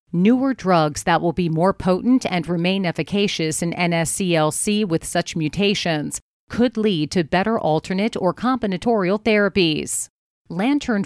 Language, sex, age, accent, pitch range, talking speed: English, female, 40-59, American, 165-205 Hz, 130 wpm